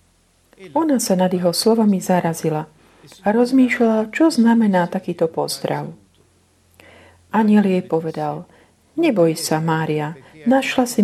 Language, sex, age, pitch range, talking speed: Slovak, female, 40-59, 155-215 Hz, 110 wpm